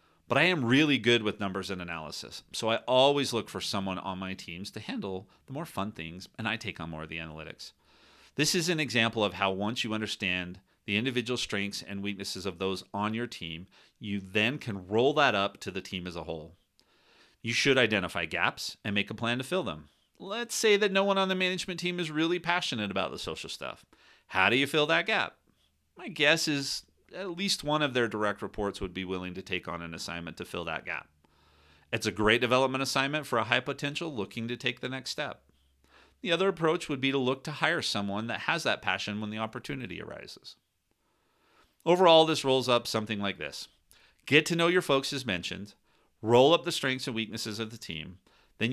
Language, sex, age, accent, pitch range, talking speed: English, male, 40-59, American, 95-145 Hz, 215 wpm